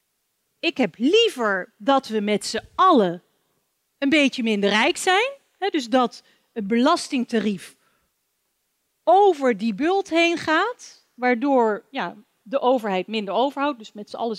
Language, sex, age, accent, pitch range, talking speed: Dutch, female, 40-59, Dutch, 210-320 Hz, 130 wpm